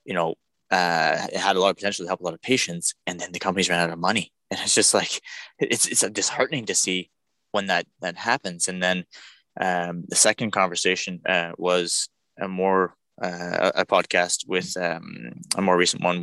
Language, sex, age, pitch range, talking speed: English, male, 20-39, 90-100 Hz, 205 wpm